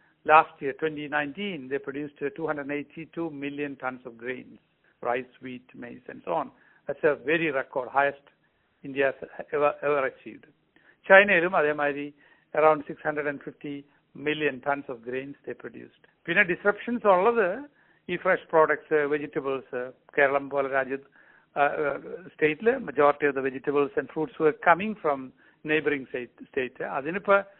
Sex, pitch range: male, 140-165 Hz